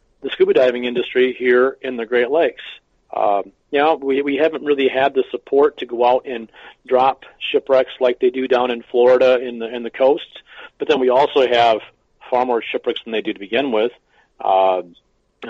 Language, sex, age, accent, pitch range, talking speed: English, male, 40-59, American, 125-160 Hz, 200 wpm